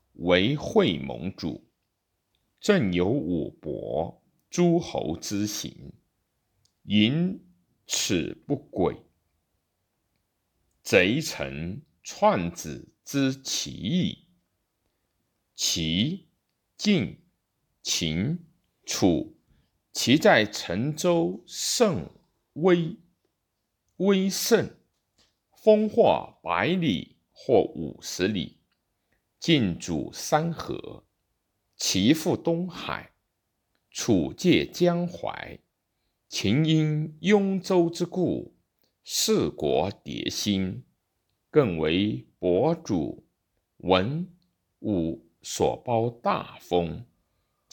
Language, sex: Chinese, male